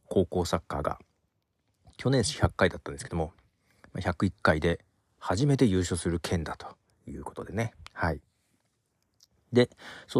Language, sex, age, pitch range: Japanese, male, 40-59, 90-130 Hz